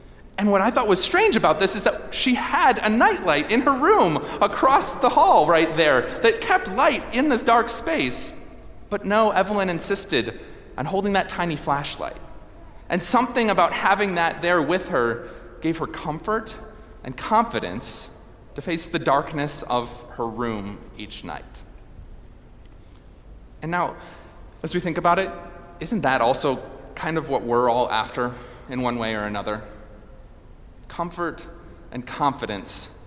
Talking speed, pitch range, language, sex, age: 150 wpm, 115-170 Hz, English, male, 30-49